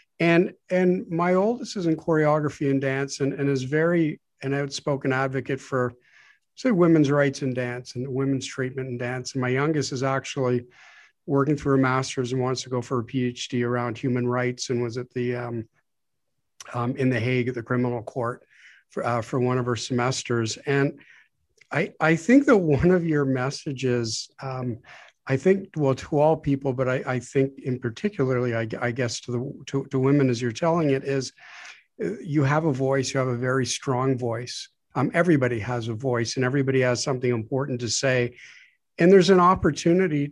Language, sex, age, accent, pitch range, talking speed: English, male, 50-69, American, 125-160 Hz, 190 wpm